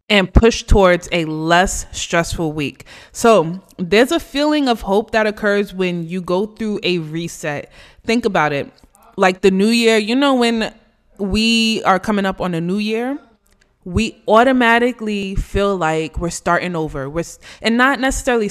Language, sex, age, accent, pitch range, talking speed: English, female, 20-39, American, 180-225 Hz, 160 wpm